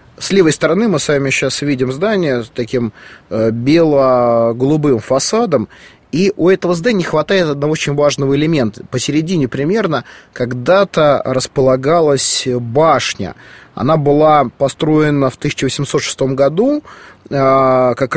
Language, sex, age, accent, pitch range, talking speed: Russian, male, 30-49, native, 125-155 Hz, 115 wpm